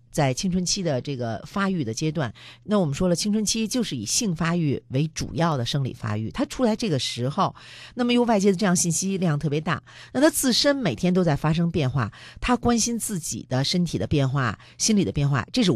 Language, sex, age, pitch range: Chinese, female, 50-69, 135-215 Hz